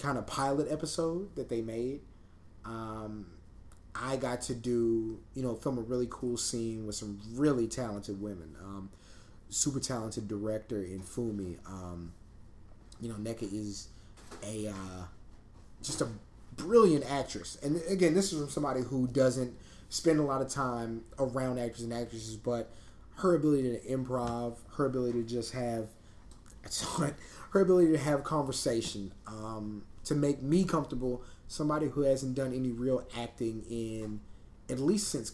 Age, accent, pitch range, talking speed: 30-49, American, 105-130 Hz, 150 wpm